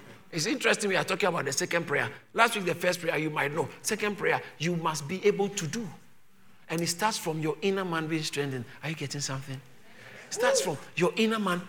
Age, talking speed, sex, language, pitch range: 50-69, 225 wpm, male, English, 145-205 Hz